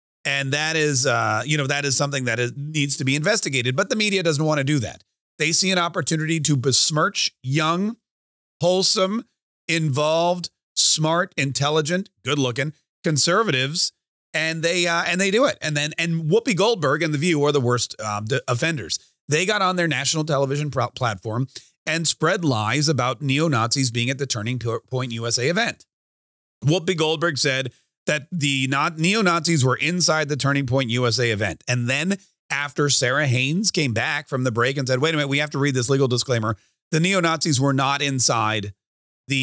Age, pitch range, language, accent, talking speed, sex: 30-49, 130-170 Hz, English, American, 185 wpm, male